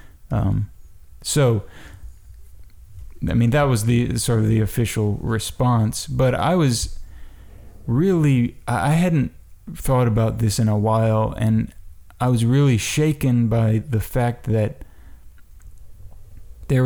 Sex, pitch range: male, 100-125 Hz